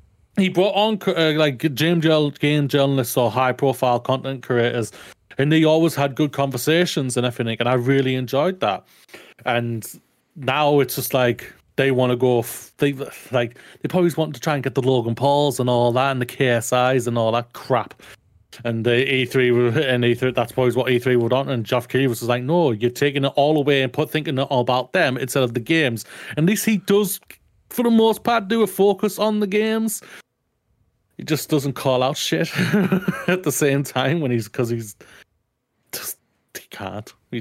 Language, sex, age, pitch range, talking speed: English, male, 30-49, 120-145 Hz, 195 wpm